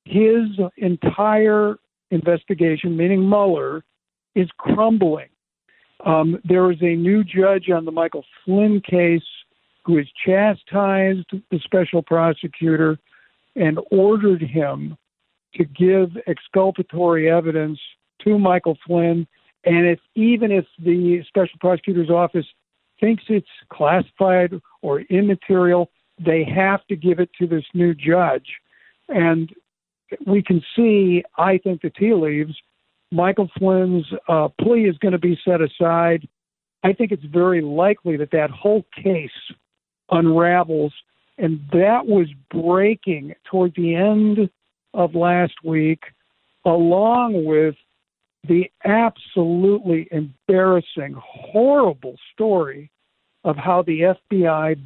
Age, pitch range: 60-79, 165-195 Hz